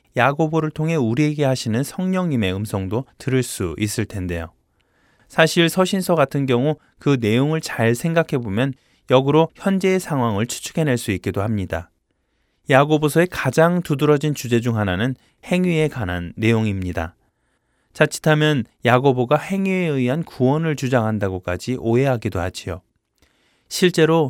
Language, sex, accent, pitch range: Korean, male, native, 110-150 Hz